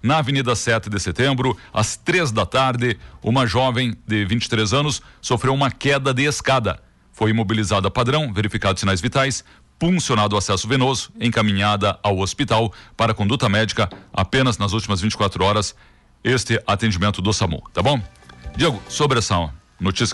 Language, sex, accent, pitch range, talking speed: Portuguese, male, Brazilian, 105-135 Hz, 150 wpm